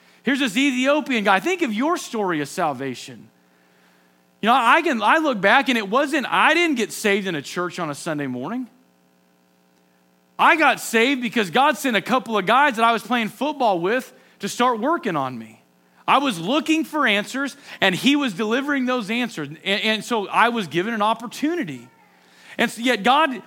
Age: 40-59